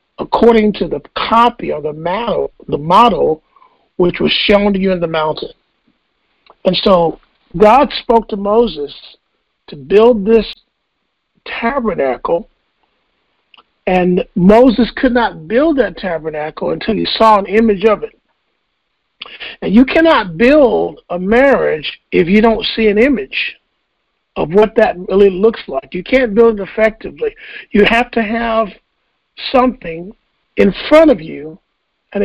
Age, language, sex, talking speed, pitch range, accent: 50-69, English, male, 140 wpm, 185-245 Hz, American